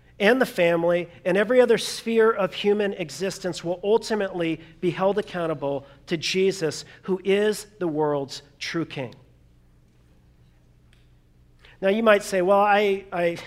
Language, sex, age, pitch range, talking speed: English, male, 40-59, 170-230 Hz, 135 wpm